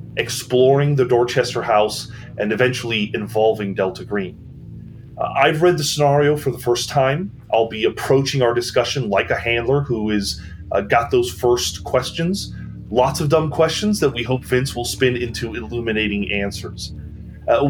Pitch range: 100-135 Hz